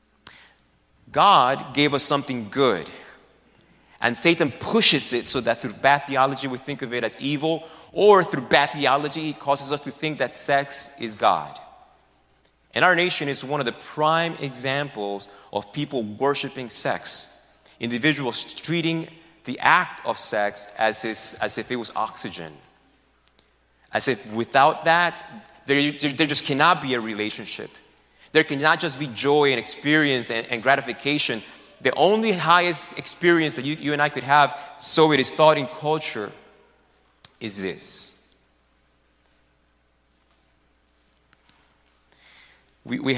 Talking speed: 140 wpm